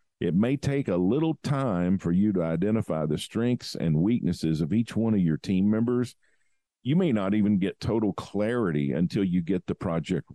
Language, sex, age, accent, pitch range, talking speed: English, male, 50-69, American, 80-105 Hz, 190 wpm